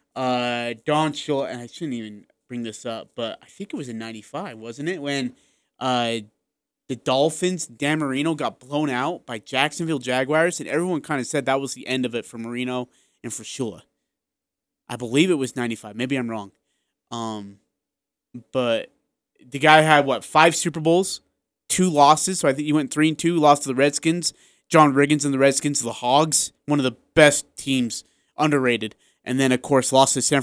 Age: 20-39